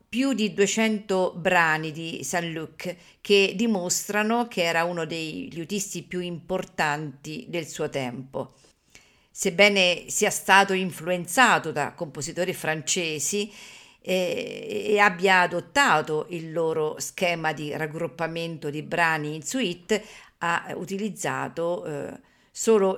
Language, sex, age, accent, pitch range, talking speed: Italian, female, 50-69, native, 160-205 Hz, 105 wpm